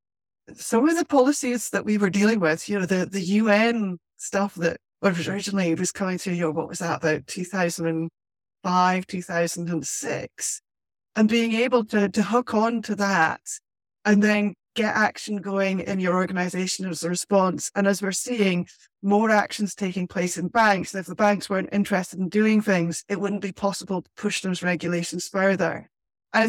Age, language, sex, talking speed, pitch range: 30-49, English, female, 175 wpm, 180-210 Hz